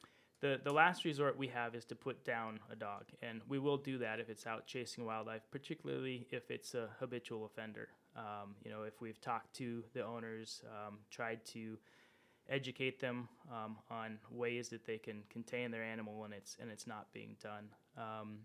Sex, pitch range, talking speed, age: male, 110-130 Hz, 190 wpm, 20-39